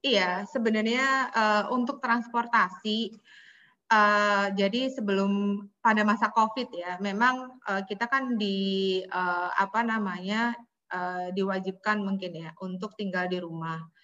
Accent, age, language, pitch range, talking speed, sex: native, 20-39, Indonesian, 175-210 Hz, 120 wpm, female